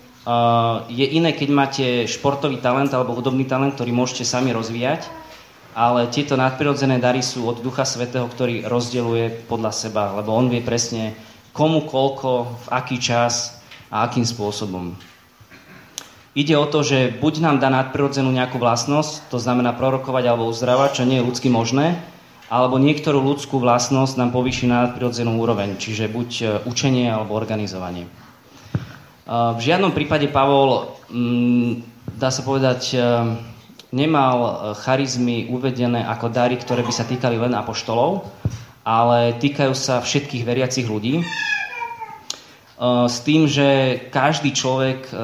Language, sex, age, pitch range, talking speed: Slovak, male, 20-39, 120-135 Hz, 135 wpm